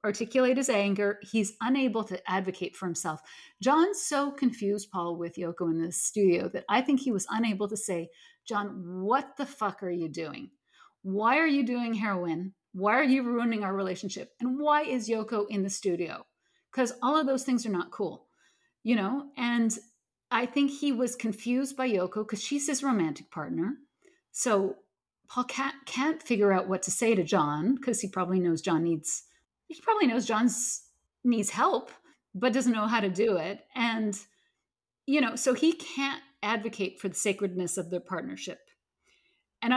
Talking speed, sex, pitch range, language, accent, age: 180 wpm, female, 185-255 Hz, English, American, 50-69